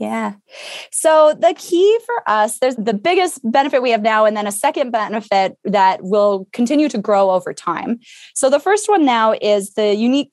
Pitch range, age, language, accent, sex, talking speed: 205-270 Hz, 20-39, English, American, female, 190 wpm